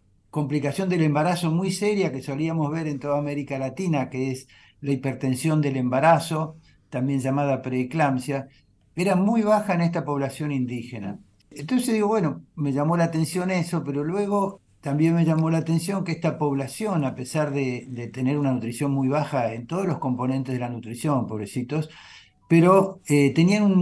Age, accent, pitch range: 50-69, Argentinian, 130-165 Hz